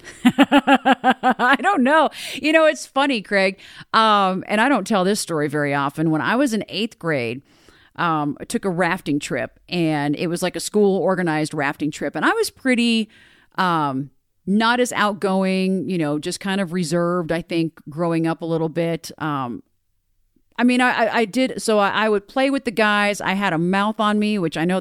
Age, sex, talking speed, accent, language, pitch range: 40-59, female, 195 wpm, American, English, 160-225 Hz